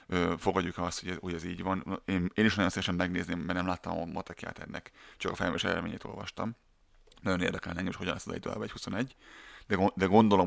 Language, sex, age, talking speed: Hungarian, male, 30-49, 220 wpm